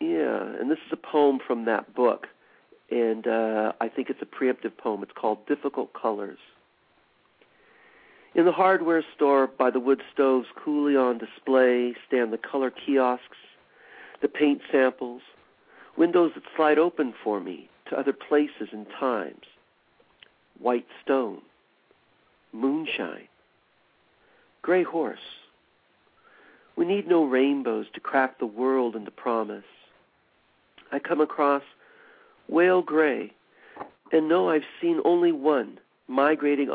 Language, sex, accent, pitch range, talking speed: English, male, American, 120-155 Hz, 125 wpm